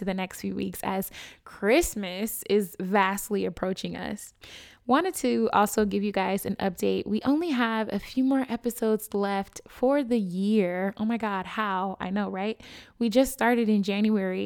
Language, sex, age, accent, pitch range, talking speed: English, female, 20-39, American, 200-230 Hz, 170 wpm